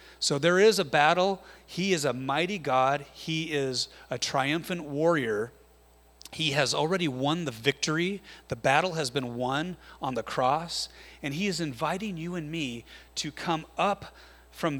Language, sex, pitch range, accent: English, male, 120-165 Hz, American